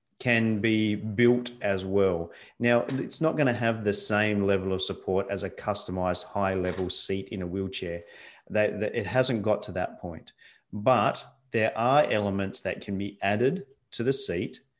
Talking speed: 165 wpm